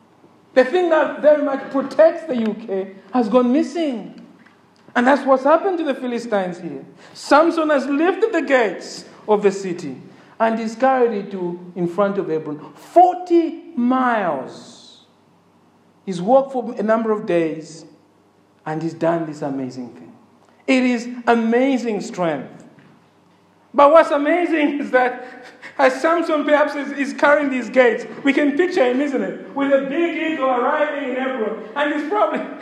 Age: 50-69